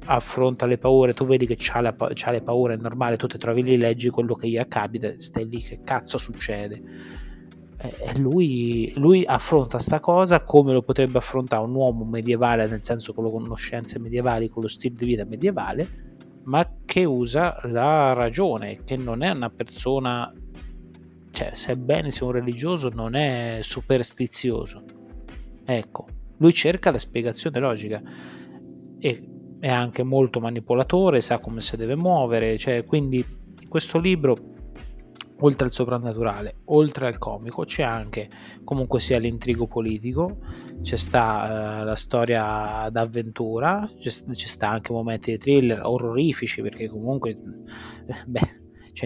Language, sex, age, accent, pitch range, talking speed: Italian, male, 30-49, native, 110-130 Hz, 150 wpm